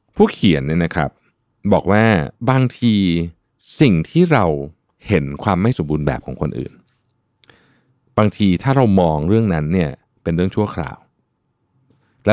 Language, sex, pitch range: Thai, male, 75-110 Hz